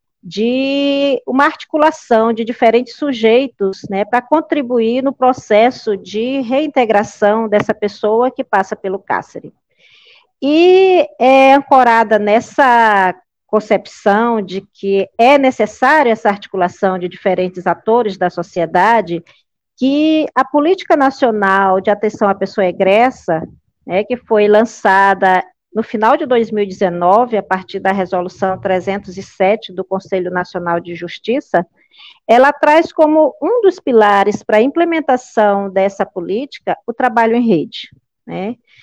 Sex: female